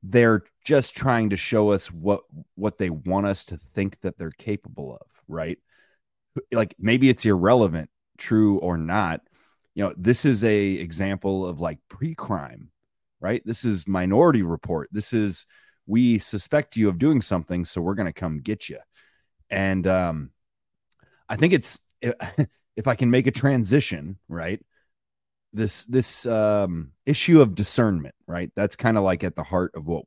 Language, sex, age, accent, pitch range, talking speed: English, male, 30-49, American, 85-110 Hz, 165 wpm